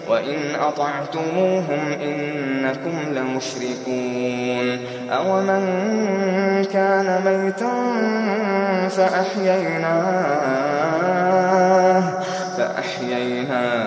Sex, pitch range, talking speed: male, 145-190 Hz, 45 wpm